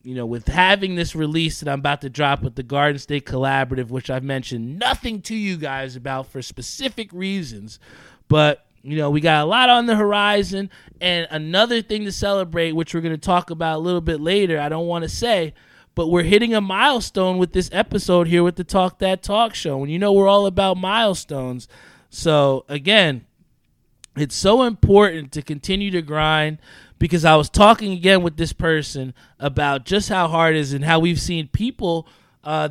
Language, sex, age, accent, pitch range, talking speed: English, male, 20-39, American, 145-190 Hz, 200 wpm